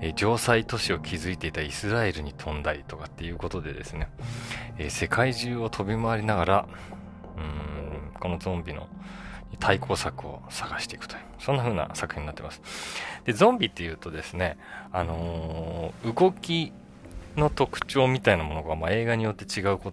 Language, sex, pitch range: Japanese, male, 80-120 Hz